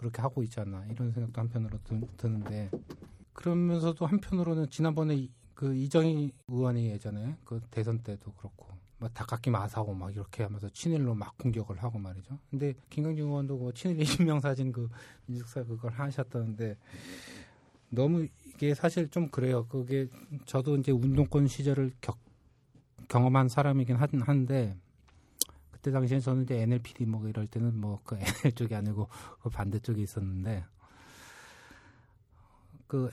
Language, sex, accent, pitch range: Korean, male, native, 105-135 Hz